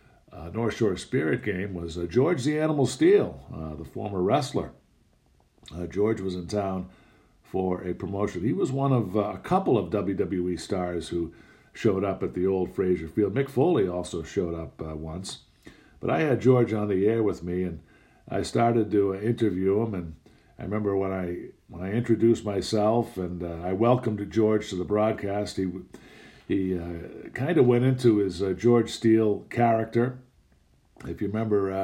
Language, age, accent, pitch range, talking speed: English, 50-69, American, 90-110 Hz, 180 wpm